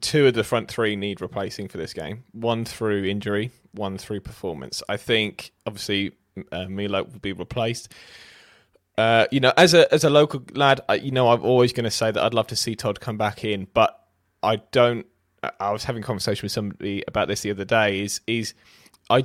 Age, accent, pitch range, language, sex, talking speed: 20-39, British, 105-130 Hz, English, male, 220 wpm